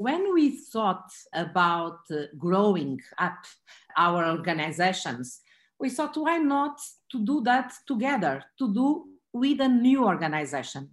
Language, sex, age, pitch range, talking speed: English, female, 50-69, 170-250 Hz, 120 wpm